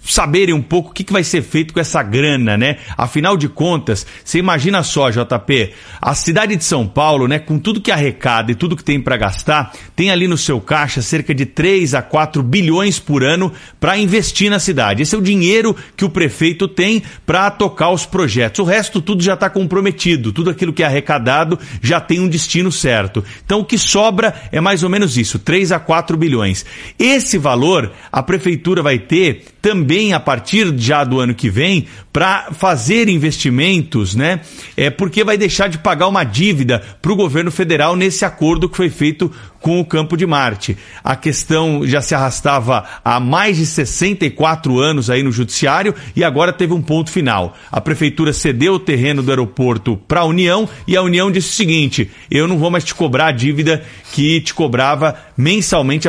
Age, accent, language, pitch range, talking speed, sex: 40-59, Brazilian, Portuguese, 135-185 Hz, 190 wpm, male